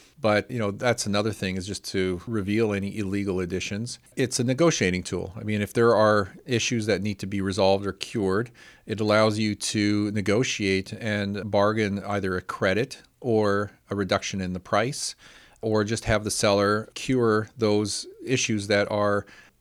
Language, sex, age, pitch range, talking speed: English, male, 40-59, 100-115 Hz, 170 wpm